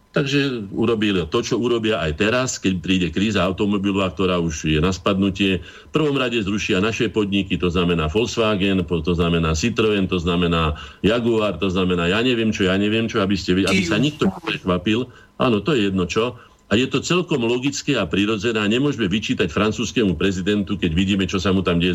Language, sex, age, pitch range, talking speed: Slovak, male, 50-69, 90-110 Hz, 190 wpm